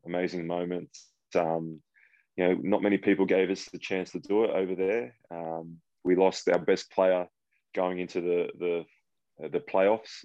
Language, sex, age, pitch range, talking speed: English, male, 20-39, 85-90 Hz, 170 wpm